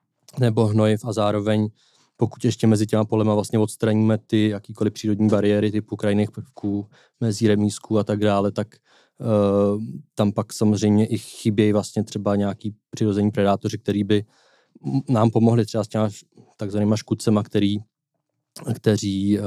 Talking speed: 135 wpm